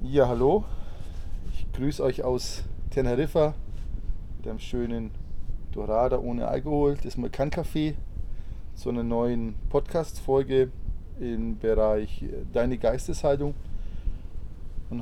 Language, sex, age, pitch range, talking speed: German, male, 20-39, 95-130 Hz, 105 wpm